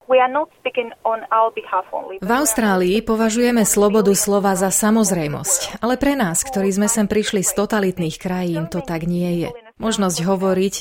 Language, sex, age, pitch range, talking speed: Slovak, female, 30-49, 160-215 Hz, 130 wpm